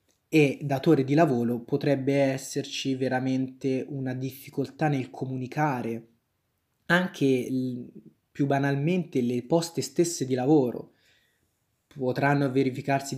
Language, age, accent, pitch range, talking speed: Italian, 20-39, native, 120-145 Hz, 95 wpm